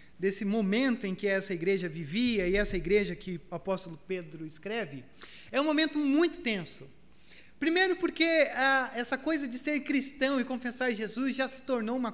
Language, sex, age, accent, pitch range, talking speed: Portuguese, male, 30-49, Brazilian, 210-275 Hz, 175 wpm